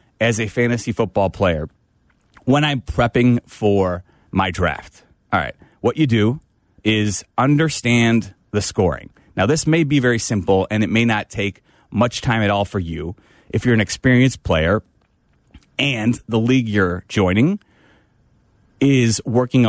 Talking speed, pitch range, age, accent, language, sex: 150 wpm, 100-125 Hz, 30-49, American, English, male